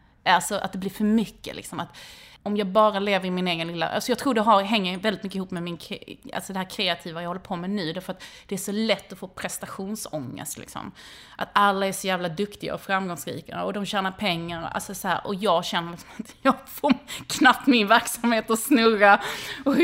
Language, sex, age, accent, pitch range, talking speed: English, female, 30-49, Swedish, 175-225 Hz, 220 wpm